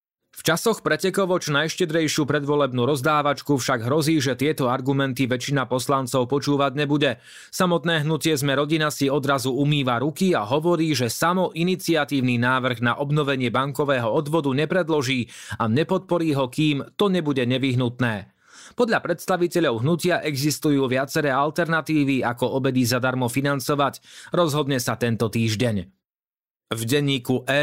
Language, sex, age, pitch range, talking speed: Slovak, male, 30-49, 130-155 Hz, 125 wpm